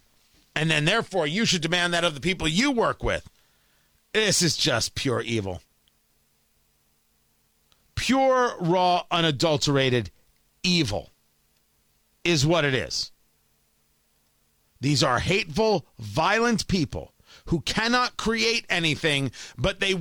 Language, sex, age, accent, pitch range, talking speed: English, male, 40-59, American, 125-195 Hz, 110 wpm